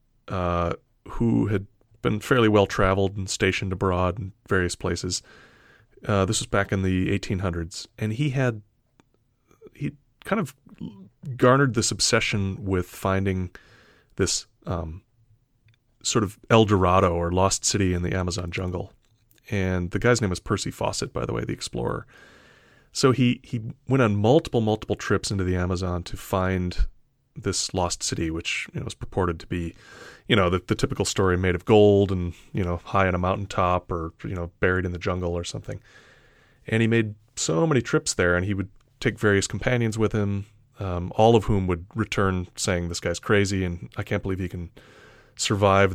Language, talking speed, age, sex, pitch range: English, 180 wpm, 30-49, male, 90-115 Hz